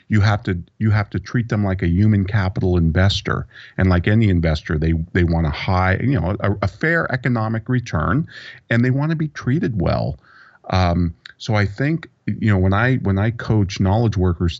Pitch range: 90-125 Hz